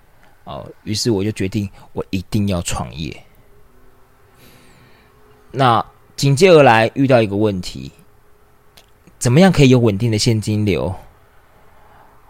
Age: 20-39